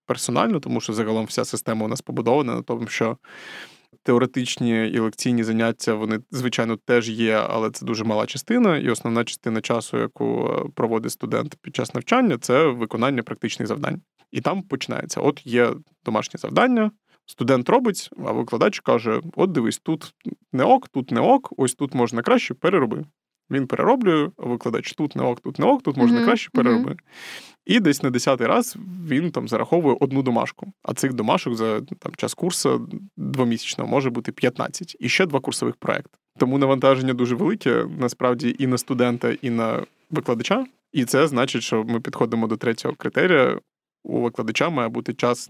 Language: Ukrainian